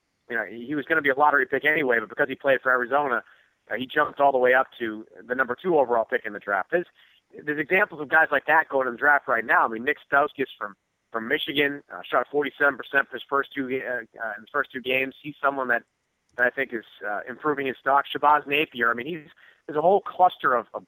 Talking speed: 260 wpm